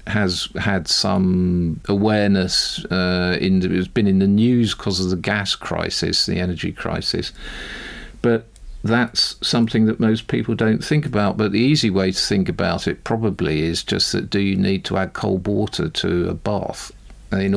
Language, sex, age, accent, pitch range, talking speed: English, male, 50-69, British, 95-115 Hz, 175 wpm